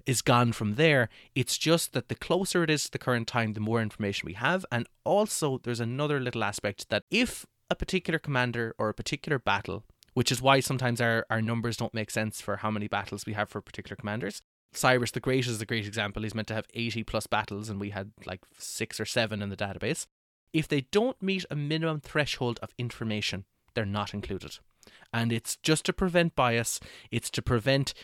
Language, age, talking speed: English, 20-39, 210 wpm